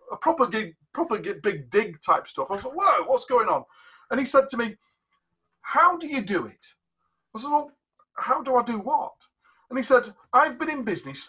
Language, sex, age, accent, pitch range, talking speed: English, male, 40-59, British, 185-275 Hz, 215 wpm